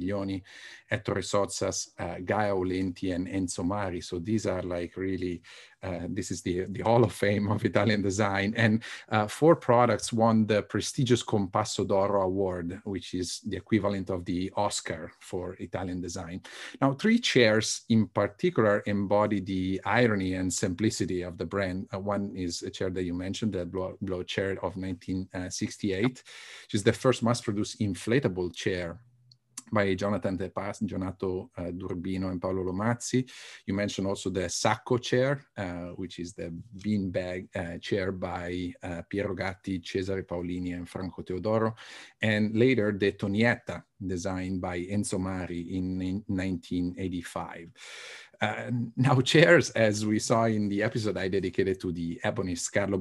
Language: English